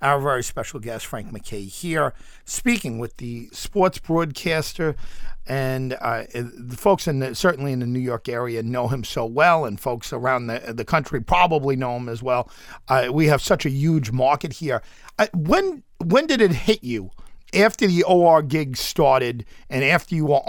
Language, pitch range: English, 125-170 Hz